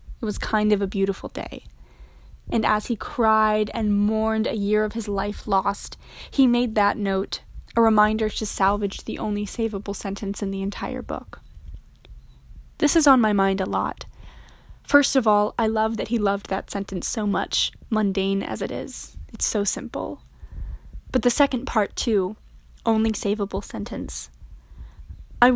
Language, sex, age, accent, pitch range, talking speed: English, female, 10-29, American, 200-235 Hz, 165 wpm